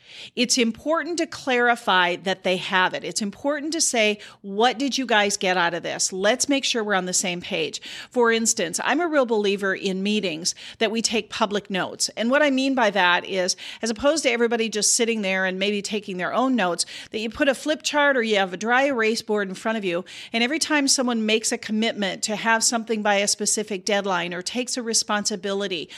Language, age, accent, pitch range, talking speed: English, 40-59, American, 195-255 Hz, 220 wpm